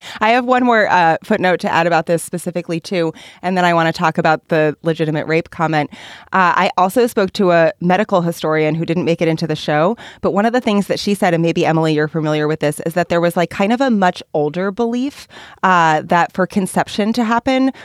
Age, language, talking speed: 30-49, English, 235 wpm